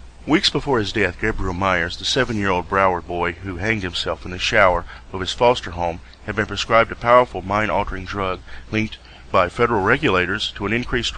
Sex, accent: male, American